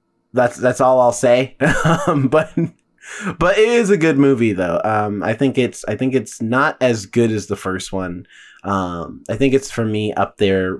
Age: 20-39